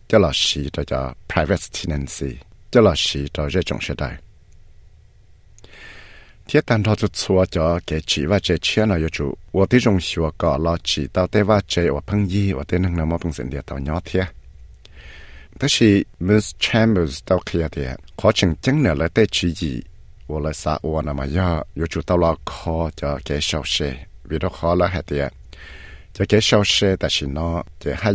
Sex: male